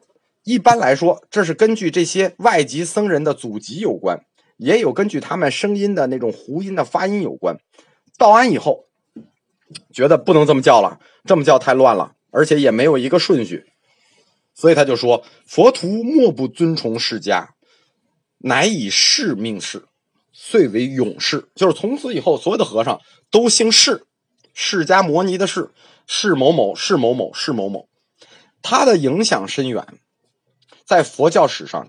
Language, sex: Chinese, male